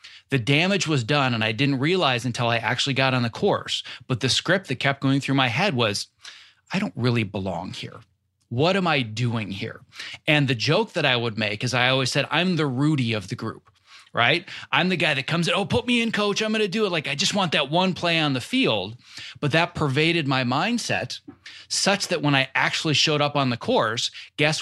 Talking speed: 230 wpm